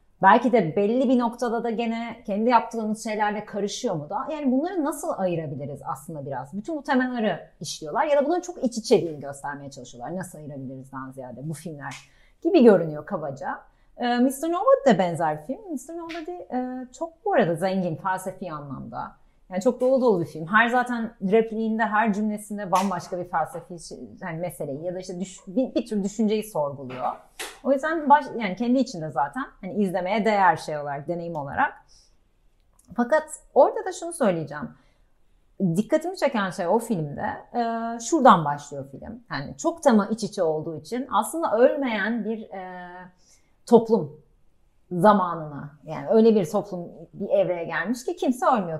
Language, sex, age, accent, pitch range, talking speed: Turkish, female, 30-49, native, 170-260 Hz, 155 wpm